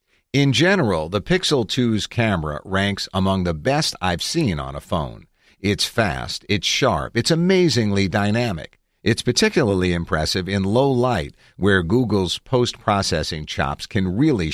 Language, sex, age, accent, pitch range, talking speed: English, male, 50-69, American, 90-125 Hz, 140 wpm